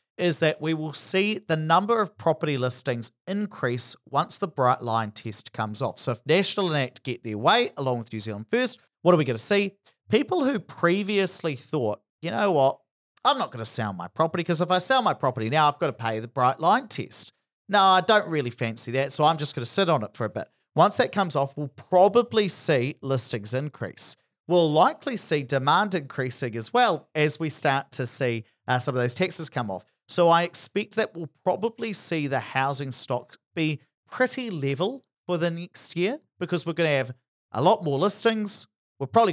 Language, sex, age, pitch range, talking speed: English, male, 40-59, 125-185 Hz, 210 wpm